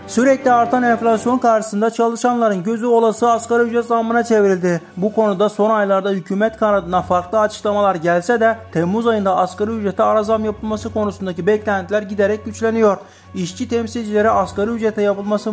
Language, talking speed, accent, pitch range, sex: Turkish, 145 wpm, native, 200-225 Hz, male